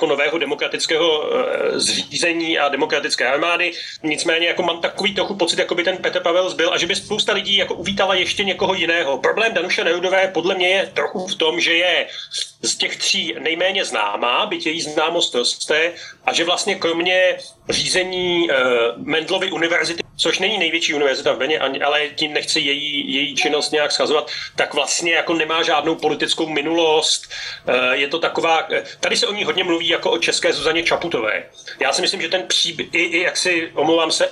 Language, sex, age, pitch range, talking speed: Slovak, male, 30-49, 160-190 Hz, 180 wpm